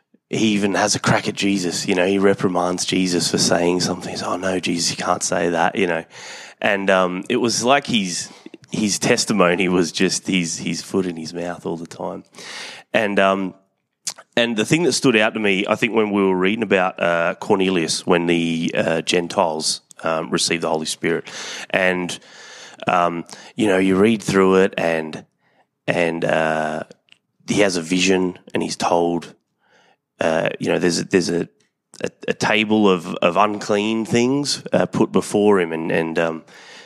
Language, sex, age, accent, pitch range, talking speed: English, male, 20-39, Australian, 85-105 Hz, 185 wpm